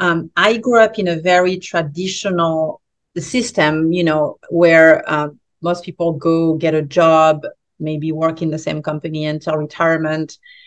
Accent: French